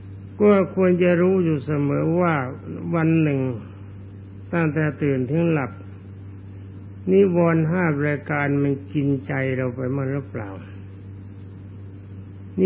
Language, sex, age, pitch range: Thai, male, 60-79, 100-160 Hz